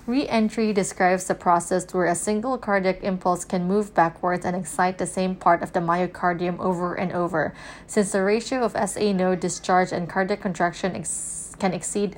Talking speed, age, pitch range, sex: 175 wpm, 20-39, 180-205 Hz, female